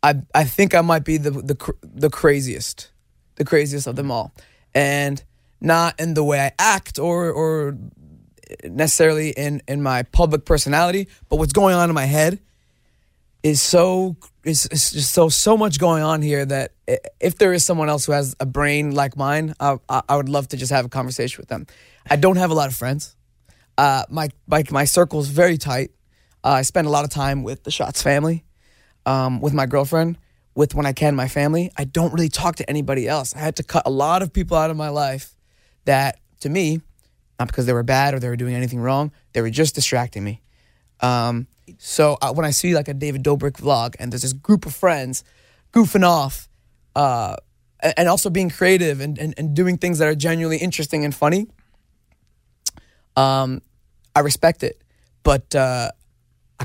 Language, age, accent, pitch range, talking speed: English, 20-39, American, 130-160 Hz, 195 wpm